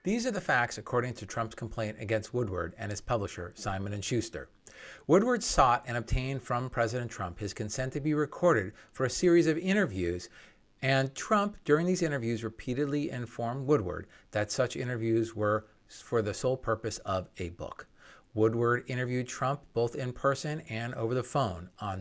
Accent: American